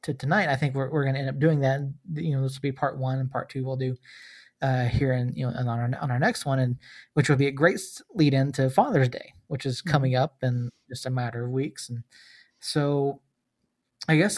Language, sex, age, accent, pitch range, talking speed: English, male, 20-39, American, 130-150 Hz, 250 wpm